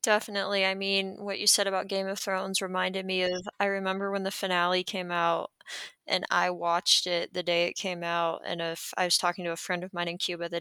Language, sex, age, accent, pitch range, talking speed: English, female, 20-39, American, 175-195 Hz, 240 wpm